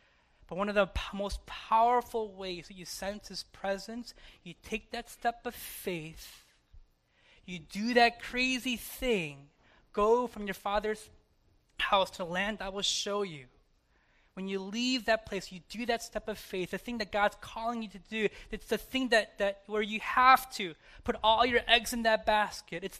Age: 20-39